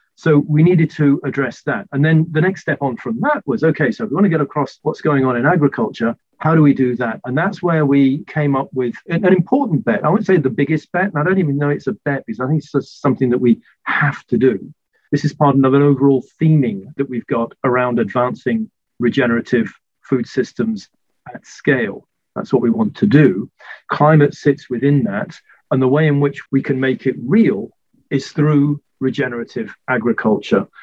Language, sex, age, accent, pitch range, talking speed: English, male, 40-59, British, 130-160 Hz, 210 wpm